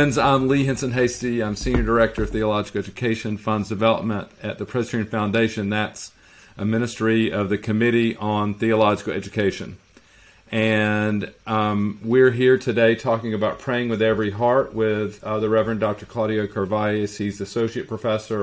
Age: 40-59